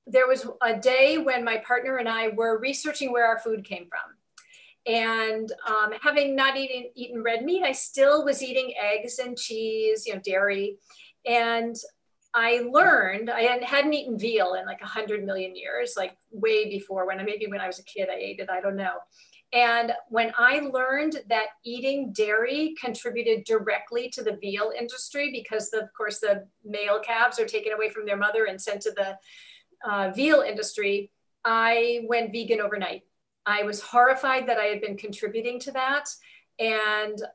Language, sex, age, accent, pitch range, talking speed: English, female, 40-59, American, 210-250 Hz, 175 wpm